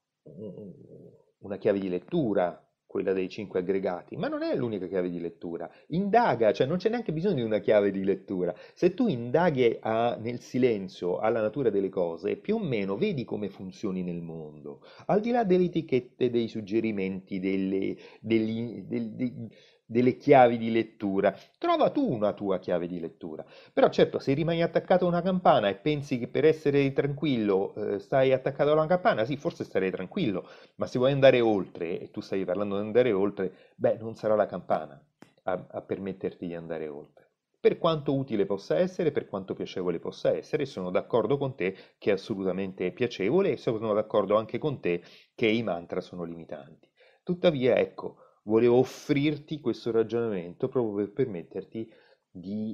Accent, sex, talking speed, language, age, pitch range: native, male, 170 wpm, Italian, 30-49, 95-140 Hz